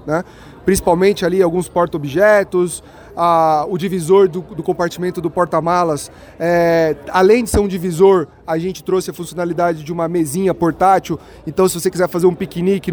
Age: 30-49